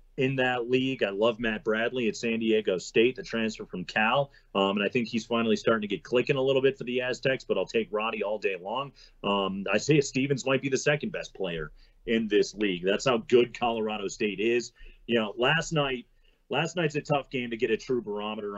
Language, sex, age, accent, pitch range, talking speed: English, male, 40-59, American, 110-150 Hz, 230 wpm